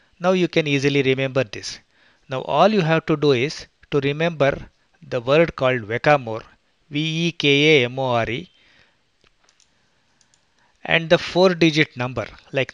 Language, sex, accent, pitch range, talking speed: English, male, Indian, 130-160 Hz, 120 wpm